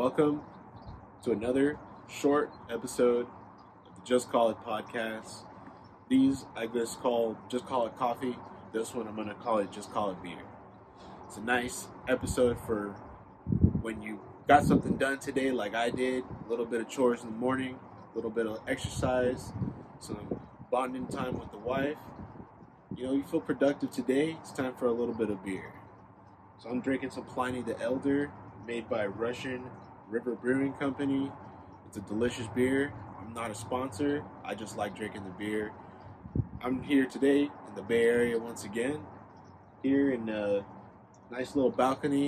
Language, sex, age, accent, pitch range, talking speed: English, male, 20-39, American, 100-130 Hz, 170 wpm